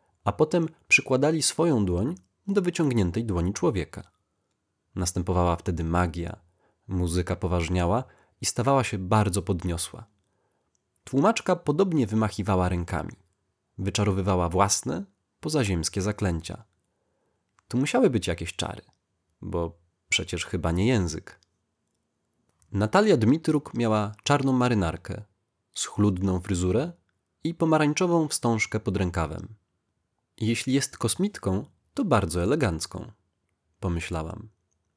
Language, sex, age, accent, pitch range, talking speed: Polish, male, 20-39, native, 90-120 Hz, 95 wpm